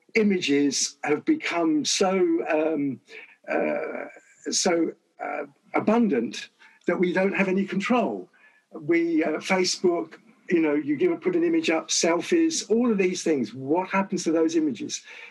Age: 50-69